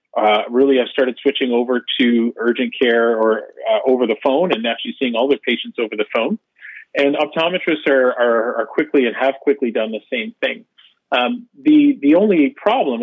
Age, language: 40-59, English